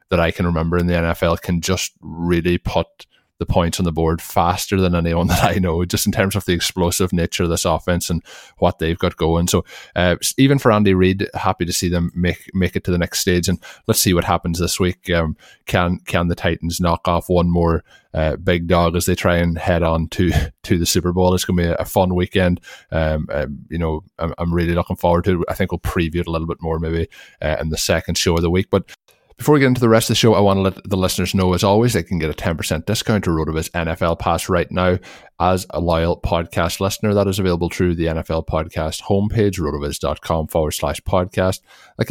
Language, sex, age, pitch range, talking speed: English, male, 20-39, 85-95 Hz, 240 wpm